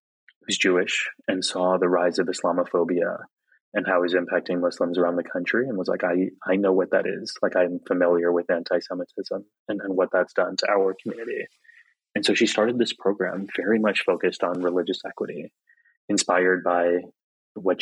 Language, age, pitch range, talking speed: English, 20-39, 90-95 Hz, 180 wpm